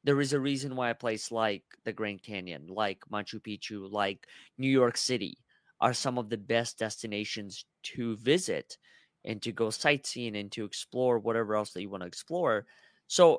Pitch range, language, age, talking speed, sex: 105-130 Hz, English, 30-49, 185 wpm, male